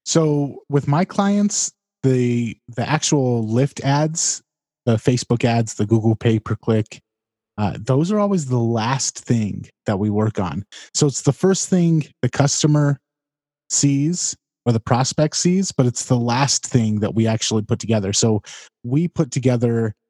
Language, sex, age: English, male, 30-49